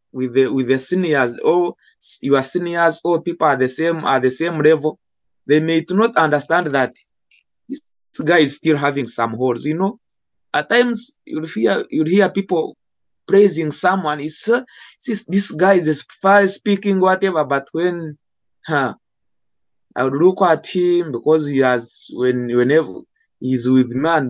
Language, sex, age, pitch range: English, male, 20-39, 130-170 Hz